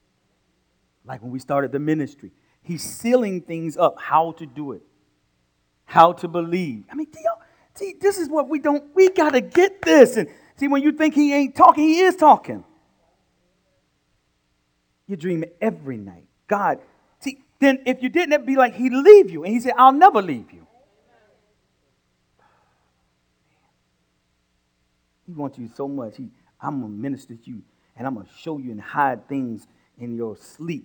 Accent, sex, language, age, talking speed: American, male, English, 50-69, 170 wpm